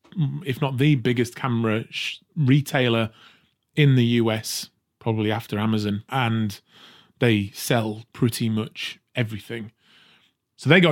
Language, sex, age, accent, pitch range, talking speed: English, male, 30-49, British, 115-150 Hz, 115 wpm